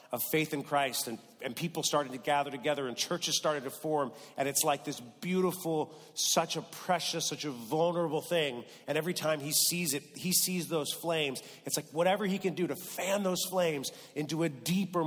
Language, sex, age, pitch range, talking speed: English, male, 40-59, 125-160 Hz, 205 wpm